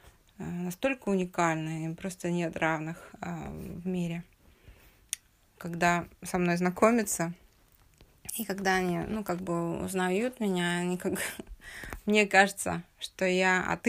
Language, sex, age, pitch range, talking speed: Russian, female, 20-39, 170-195 Hz, 110 wpm